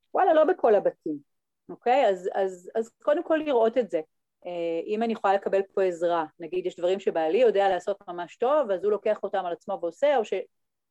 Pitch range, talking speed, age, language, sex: 175-245 Hz, 205 wpm, 30-49, Hebrew, female